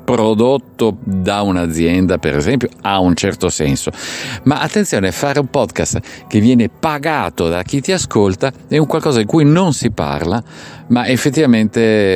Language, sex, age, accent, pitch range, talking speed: Italian, male, 50-69, native, 85-120 Hz, 155 wpm